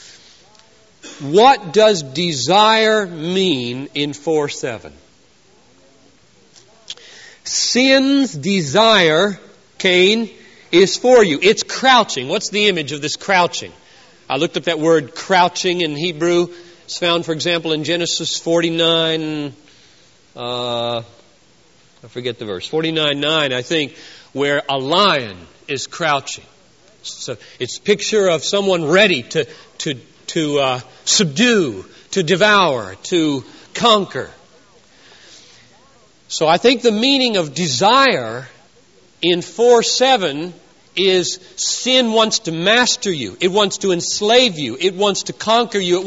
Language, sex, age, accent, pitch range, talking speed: English, male, 40-59, American, 155-215 Hz, 120 wpm